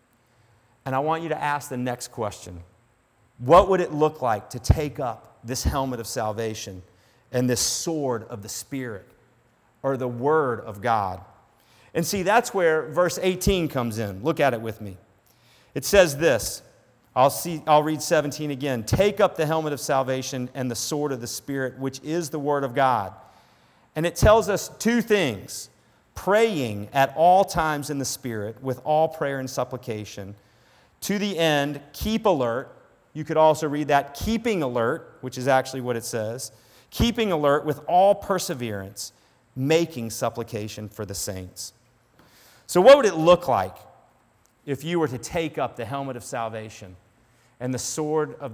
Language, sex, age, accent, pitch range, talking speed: English, male, 40-59, American, 115-155 Hz, 170 wpm